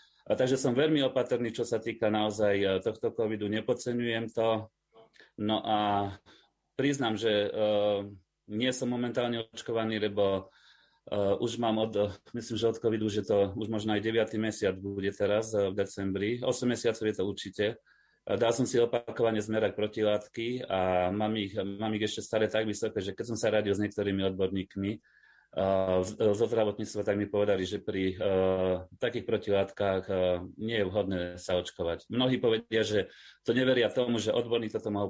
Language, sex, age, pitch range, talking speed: Slovak, male, 30-49, 100-115 Hz, 160 wpm